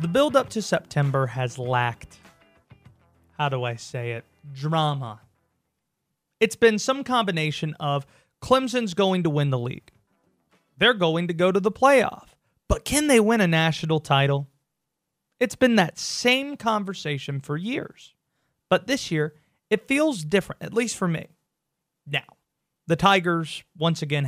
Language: English